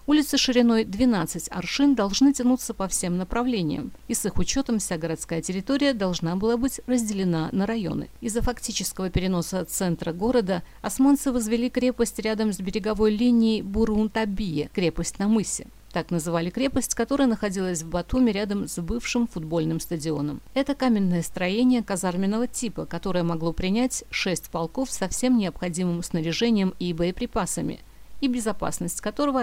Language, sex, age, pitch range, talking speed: Russian, female, 50-69, 175-235 Hz, 145 wpm